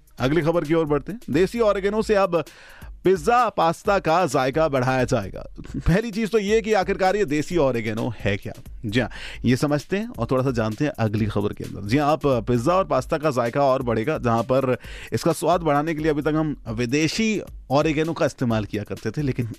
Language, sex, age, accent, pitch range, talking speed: Hindi, male, 30-49, native, 115-170 Hz, 210 wpm